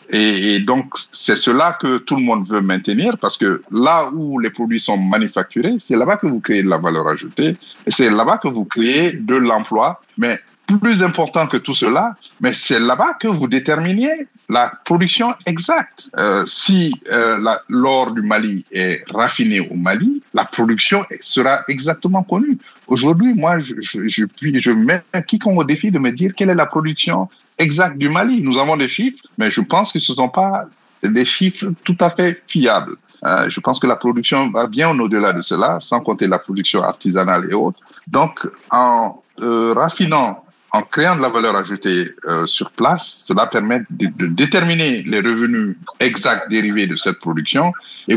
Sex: male